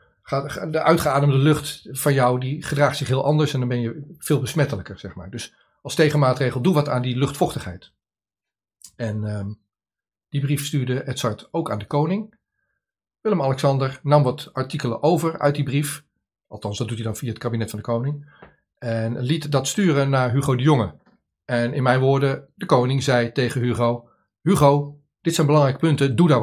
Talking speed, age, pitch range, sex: 175 wpm, 40-59, 125-150 Hz, male